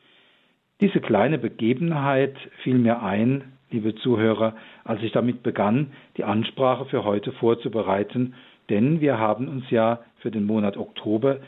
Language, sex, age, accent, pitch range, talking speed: German, male, 50-69, German, 110-140 Hz, 135 wpm